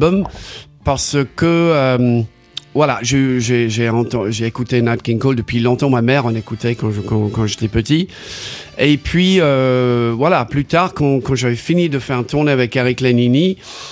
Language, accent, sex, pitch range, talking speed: French, French, male, 115-150 Hz, 180 wpm